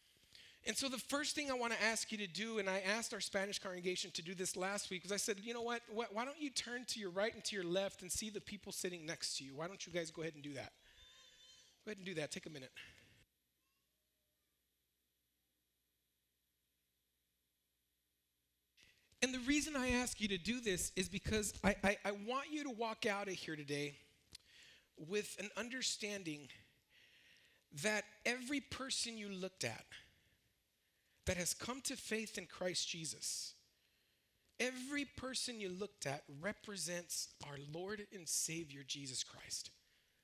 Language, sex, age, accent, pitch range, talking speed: English, male, 40-59, American, 155-230 Hz, 175 wpm